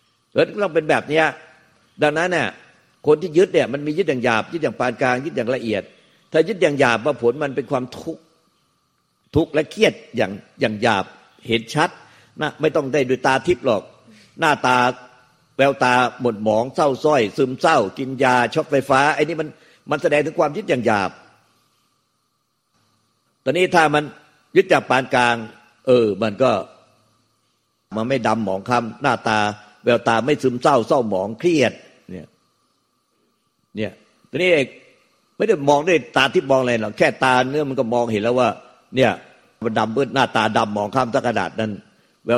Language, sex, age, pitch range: Thai, male, 50-69, 110-135 Hz